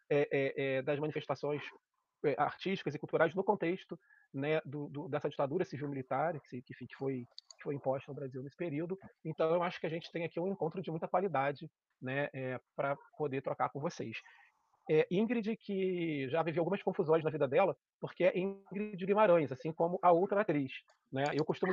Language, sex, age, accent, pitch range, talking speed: Portuguese, male, 30-49, Brazilian, 135-170 Hz, 190 wpm